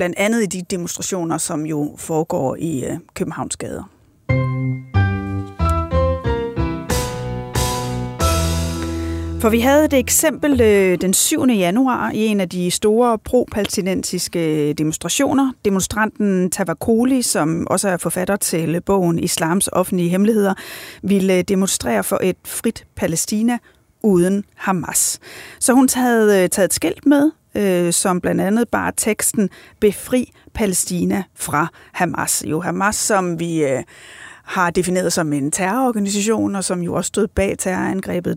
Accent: native